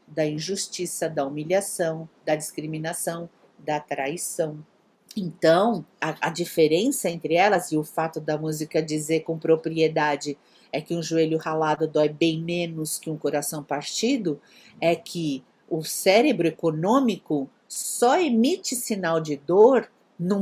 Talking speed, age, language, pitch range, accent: 130 wpm, 50-69, Portuguese, 160-220 Hz, Brazilian